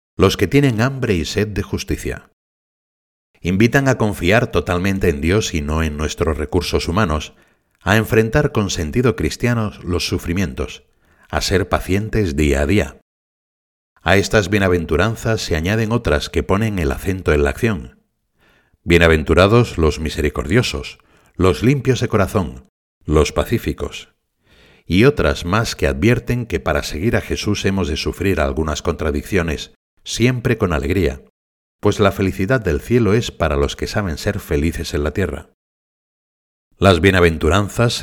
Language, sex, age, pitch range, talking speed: Spanish, male, 60-79, 80-105 Hz, 140 wpm